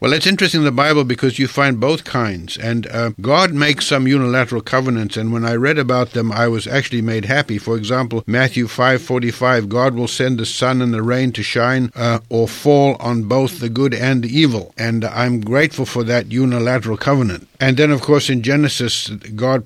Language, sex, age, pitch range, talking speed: English, male, 60-79, 110-130 Hz, 205 wpm